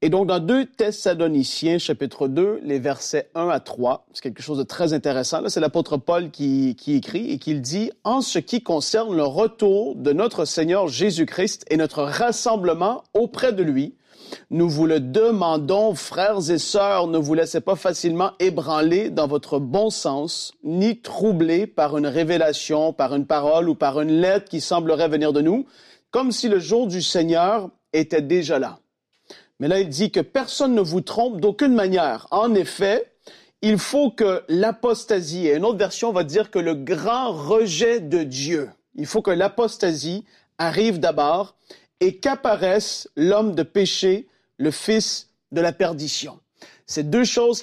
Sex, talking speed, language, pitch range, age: male, 175 wpm, French, 155-215 Hz, 40-59